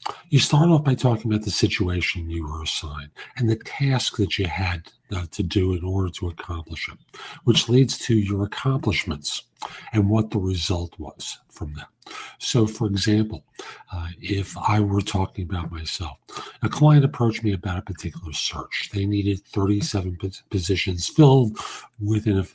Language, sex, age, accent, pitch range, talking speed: English, male, 50-69, American, 90-110 Hz, 160 wpm